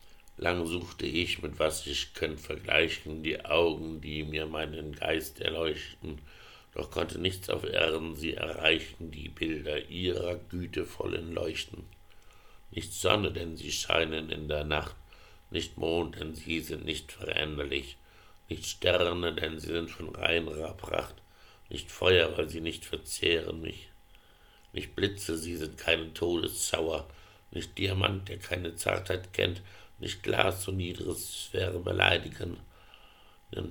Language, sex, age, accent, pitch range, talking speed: English, male, 60-79, German, 80-90 Hz, 135 wpm